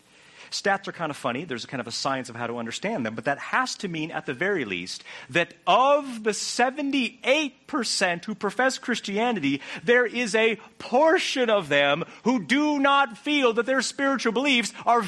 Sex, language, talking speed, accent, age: male, English, 185 wpm, American, 40-59